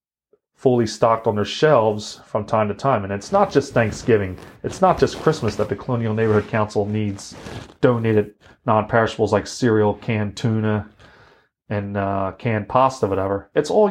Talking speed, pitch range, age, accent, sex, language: 160 wpm, 105-120 Hz, 30-49, American, male, English